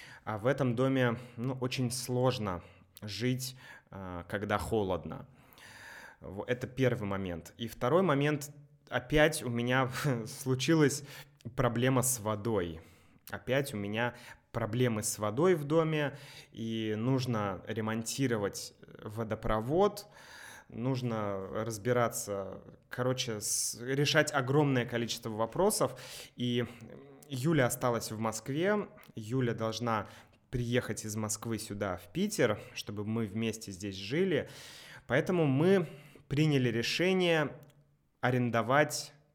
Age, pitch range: 20-39, 110-135 Hz